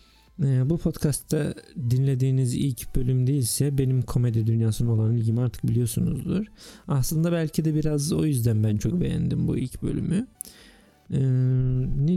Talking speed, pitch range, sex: 140 wpm, 120-155 Hz, male